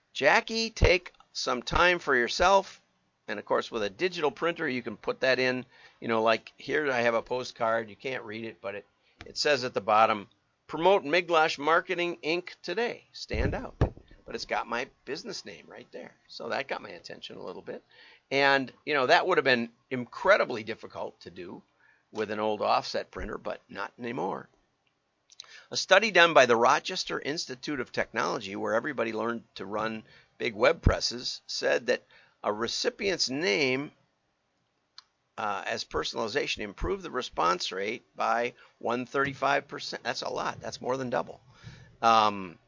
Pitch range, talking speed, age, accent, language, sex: 115-170 Hz, 165 wpm, 50-69, American, English, male